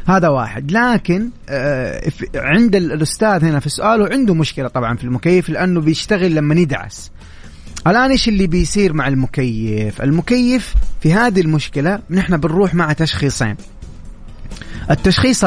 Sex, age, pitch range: male, 30-49, 135-185 Hz